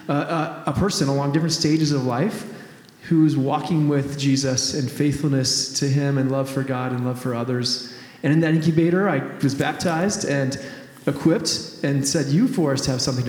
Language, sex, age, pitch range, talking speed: English, male, 20-39, 135-160 Hz, 185 wpm